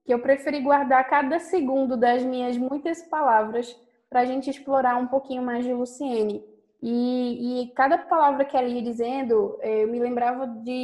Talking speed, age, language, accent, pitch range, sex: 170 wpm, 10-29, Portuguese, Brazilian, 245-300 Hz, female